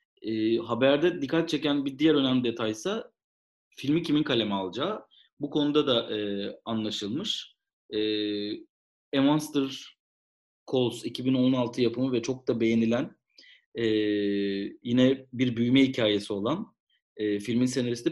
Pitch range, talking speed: 110-150 Hz, 115 wpm